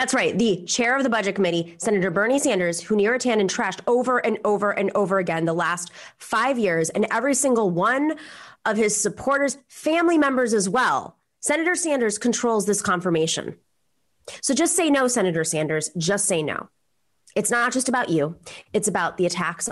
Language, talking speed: English, 180 wpm